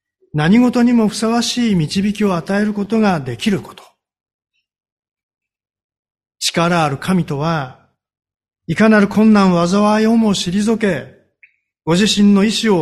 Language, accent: Japanese, native